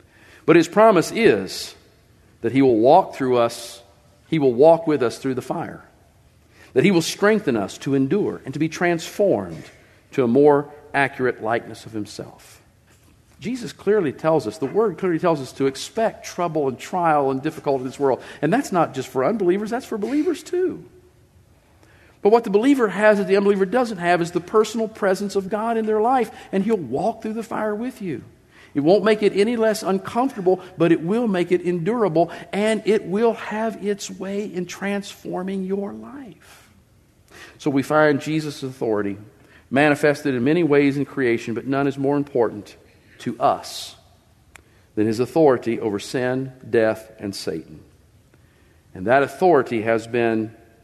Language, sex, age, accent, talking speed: English, male, 50-69, American, 170 wpm